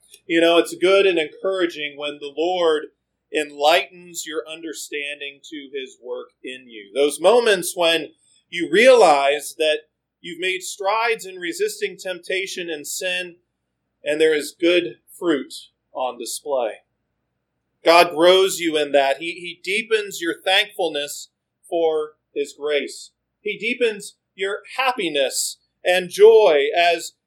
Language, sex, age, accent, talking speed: English, male, 40-59, American, 130 wpm